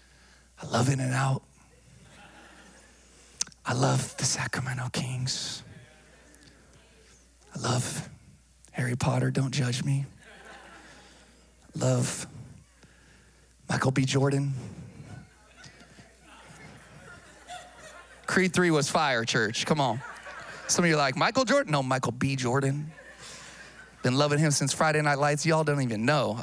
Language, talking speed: English, 110 wpm